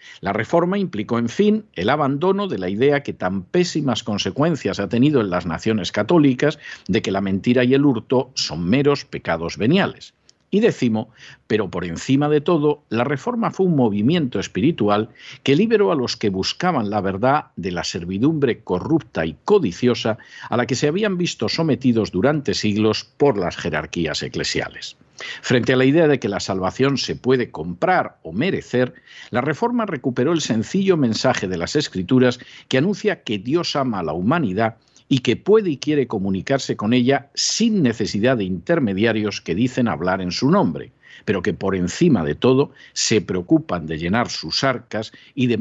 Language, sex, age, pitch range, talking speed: Spanish, male, 50-69, 105-150 Hz, 175 wpm